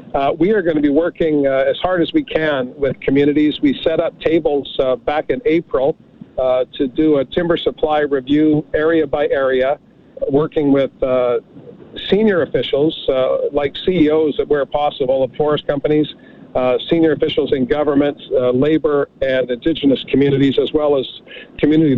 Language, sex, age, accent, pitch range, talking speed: English, male, 50-69, American, 140-165 Hz, 165 wpm